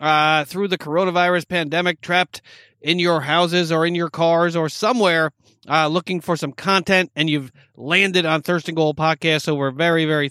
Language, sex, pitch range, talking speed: English, male, 150-195 Hz, 180 wpm